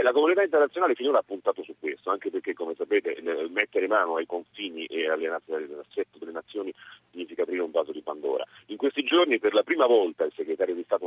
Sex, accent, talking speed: male, native, 205 wpm